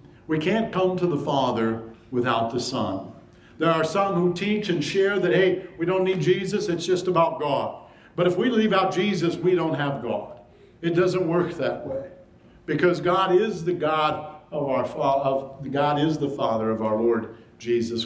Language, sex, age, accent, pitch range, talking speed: English, male, 60-79, American, 125-180 Hz, 190 wpm